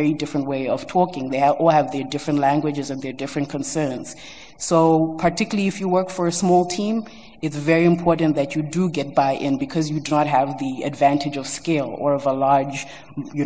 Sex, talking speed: female, 200 wpm